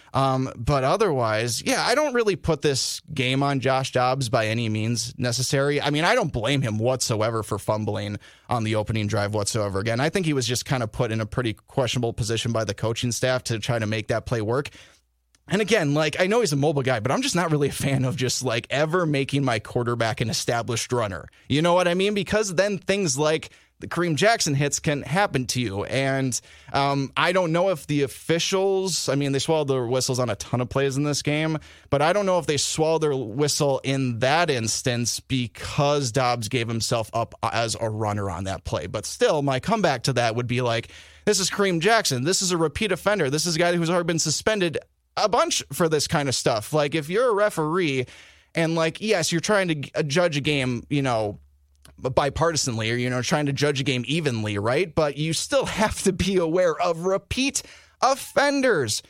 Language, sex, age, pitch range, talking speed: English, male, 20-39, 115-160 Hz, 220 wpm